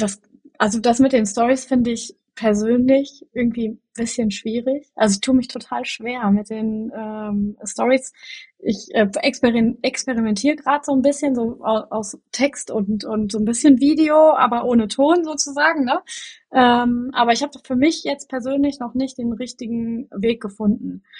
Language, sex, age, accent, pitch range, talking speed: German, female, 20-39, German, 220-265 Hz, 170 wpm